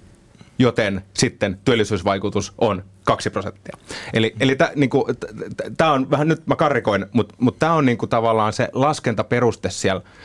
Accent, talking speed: native, 140 wpm